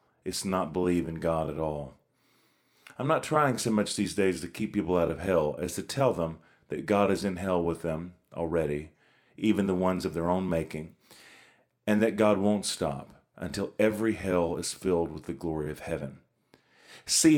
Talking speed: 190 wpm